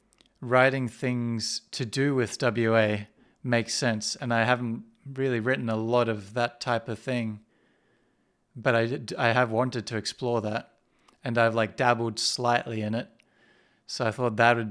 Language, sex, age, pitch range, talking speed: English, male, 30-49, 115-125 Hz, 165 wpm